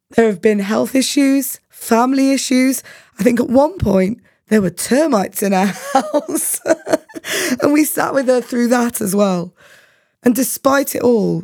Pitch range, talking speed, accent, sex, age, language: 185-255 Hz, 165 wpm, British, female, 20-39, English